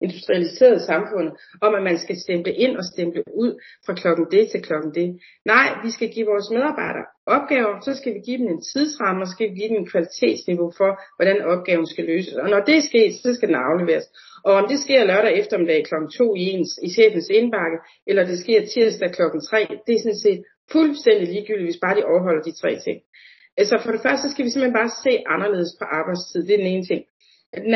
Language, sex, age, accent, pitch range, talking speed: Danish, female, 40-59, native, 200-280 Hz, 220 wpm